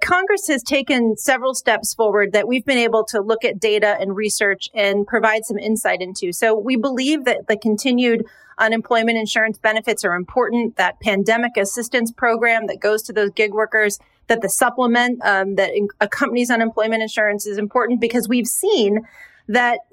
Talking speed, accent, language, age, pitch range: 170 wpm, American, English, 30-49, 205-240 Hz